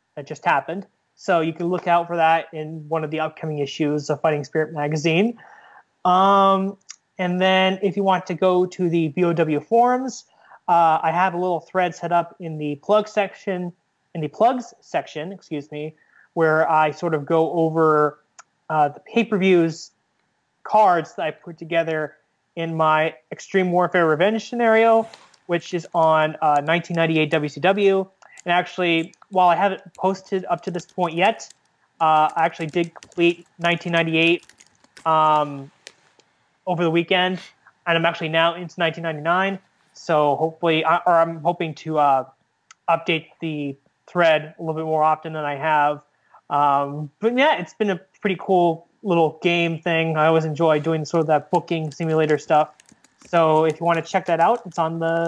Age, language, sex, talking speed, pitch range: 20-39, English, male, 165 wpm, 155-185 Hz